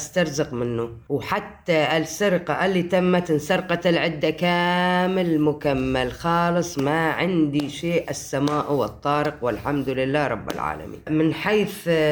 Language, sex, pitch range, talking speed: Arabic, female, 140-170 Hz, 110 wpm